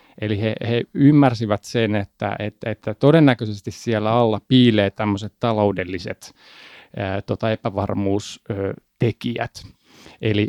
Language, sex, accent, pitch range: Finnish, male, native, 105-125 Hz